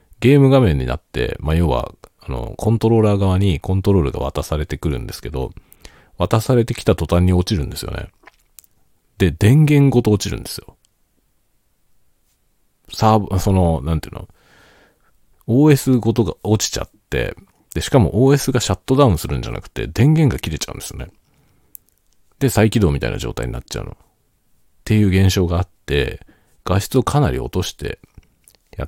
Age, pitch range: 40-59, 80-115 Hz